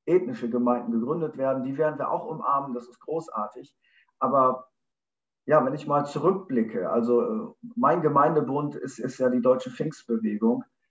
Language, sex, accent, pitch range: German, male, German, 120-145 Hz